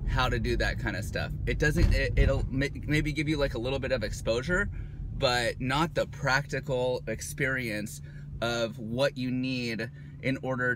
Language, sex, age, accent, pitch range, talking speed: English, male, 30-49, American, 120-145 Hz, 165 wpm